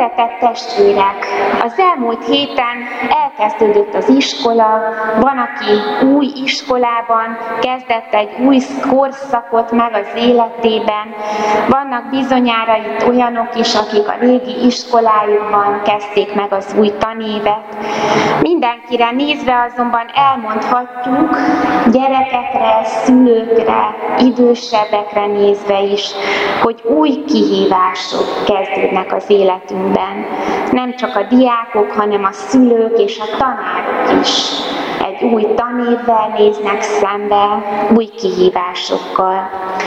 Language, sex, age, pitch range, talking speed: Hungarian, female, 20-39, 205-245 Hz, 95 wpm